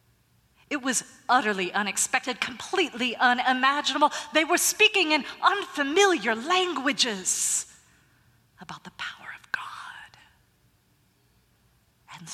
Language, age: English, 40-59